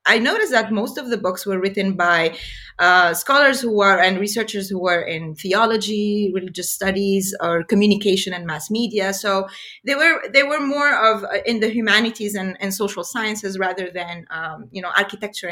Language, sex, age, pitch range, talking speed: English, female, 30-49, 175-220 Hz, 180 wpm